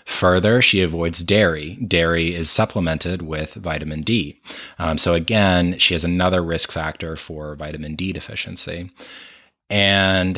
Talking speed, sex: 135 wpm, male